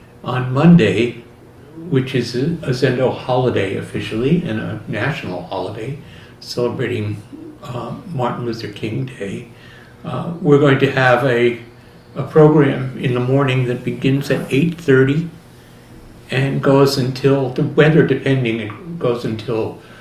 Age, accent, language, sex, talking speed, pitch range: 60-79, American, English, male, 125 wpm, 120-145 Hz